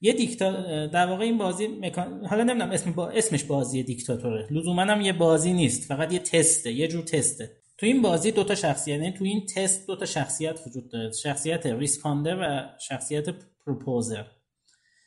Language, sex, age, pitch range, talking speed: Persian, male, 30-49, 145-200 Hz, 160 wpm